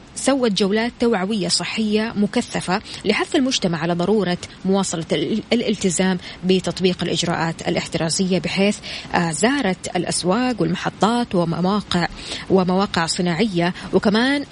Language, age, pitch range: Arabic, 20-39, 175-215 Hz